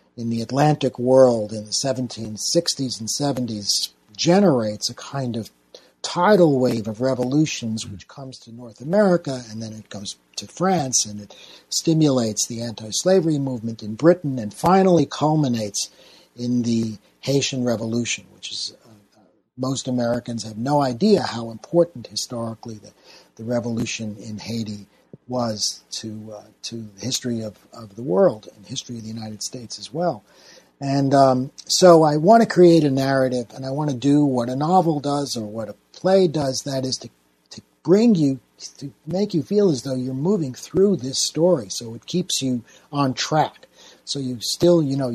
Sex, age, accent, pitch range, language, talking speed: male, 50-69, American, 110-150 Hz, English, 175 wpm